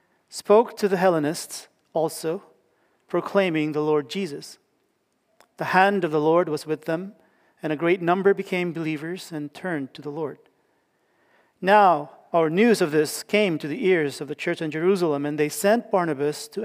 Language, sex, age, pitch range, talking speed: English, male, 40-59, 160-200 Hz, 170 wpm